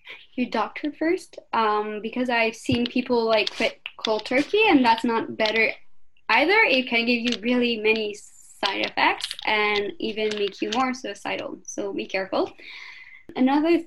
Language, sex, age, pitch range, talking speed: English, female, 10-29, 215-290 Hz, 150 wpm